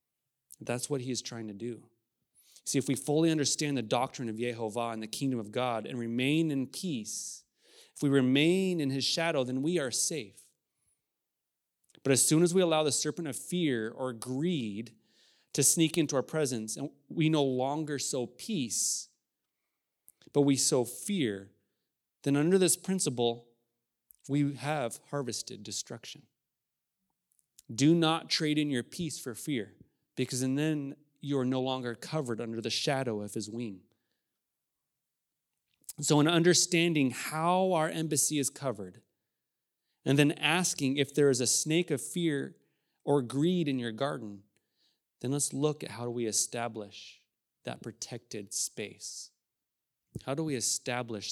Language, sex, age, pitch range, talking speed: English, male, 30-49, 115-150 Hz, 150 wpm